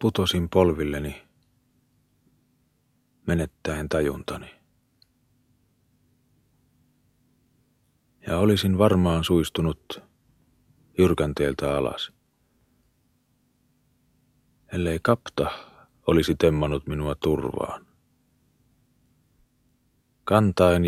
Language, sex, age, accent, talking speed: Finnish, male, 40-59, native, 50 wpm